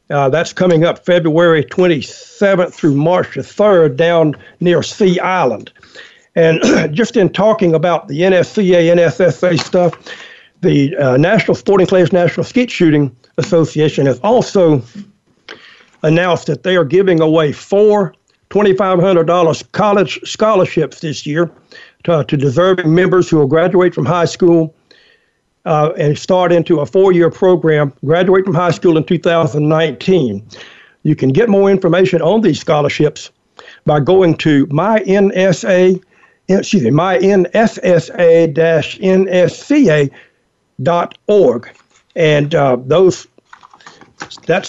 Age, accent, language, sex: 60-79, American, English, male